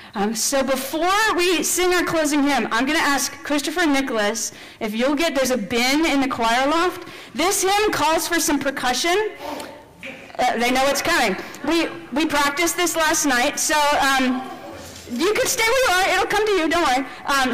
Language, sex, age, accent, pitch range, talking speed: English, female, 40-59, American, 255-355 Hz, 195 wpm